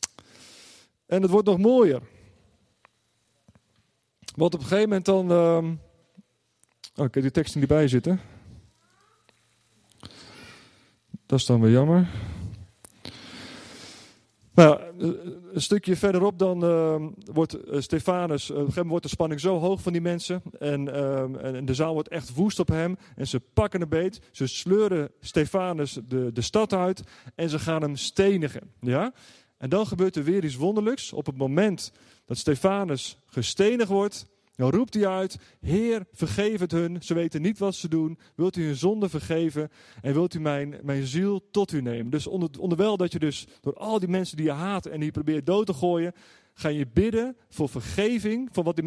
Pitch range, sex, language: 130-185 Hz, male, Dutch